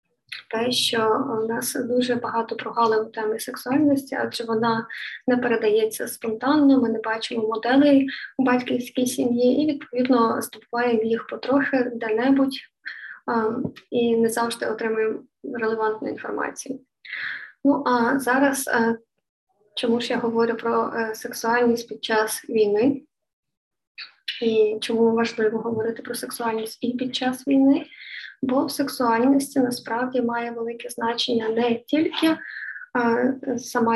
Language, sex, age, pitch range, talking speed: Ukrainian, female, 20-39, 230-260 Hz, 115 wpm